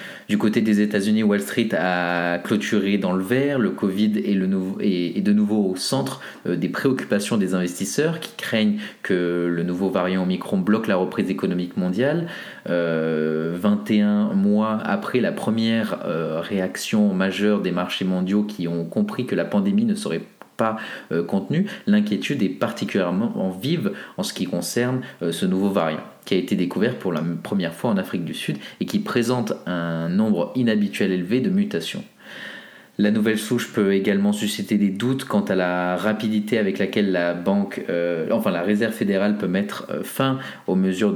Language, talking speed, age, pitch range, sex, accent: French, 170 wpm, 30-49, 95-115 Hz, male, French